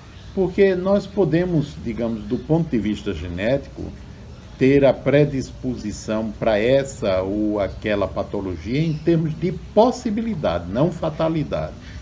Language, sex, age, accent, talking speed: Portuguese, male, 60-79, Brazilian, 115 wpm